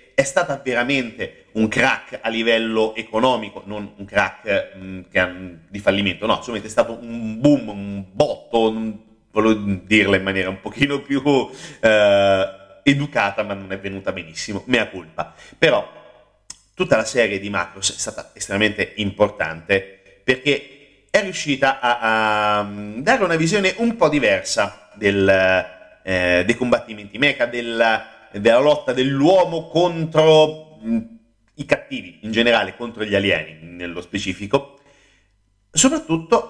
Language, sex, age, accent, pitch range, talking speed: Italian, male, 30-49, native, 100-145 Hz, 135 wpm